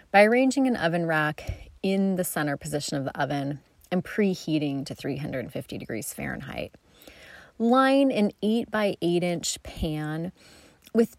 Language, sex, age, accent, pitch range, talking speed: English, female, 30-49, American, 155-200 Hz, 140 wpm